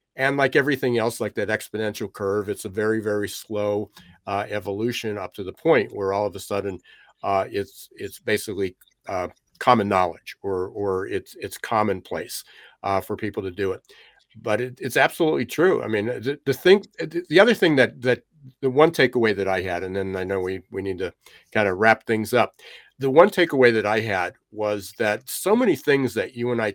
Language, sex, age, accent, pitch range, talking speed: English, male, 60-79, American, 105-125 Hz, 205 wpm